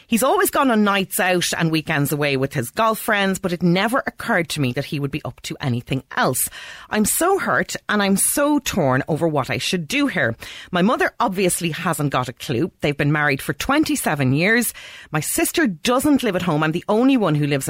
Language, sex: English, female